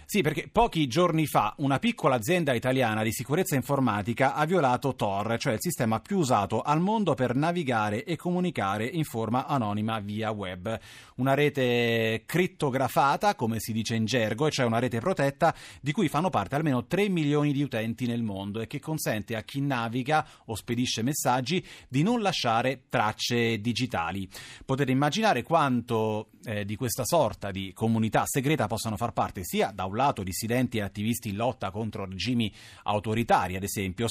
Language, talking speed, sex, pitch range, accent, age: Italian, 170 wpm, male, 110-150 Hz, native, 30-49